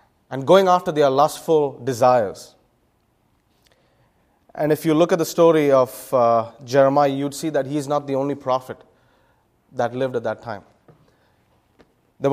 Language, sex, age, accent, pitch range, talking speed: English, male, 30-49, Indian, 130-170 Hz, 145 wpm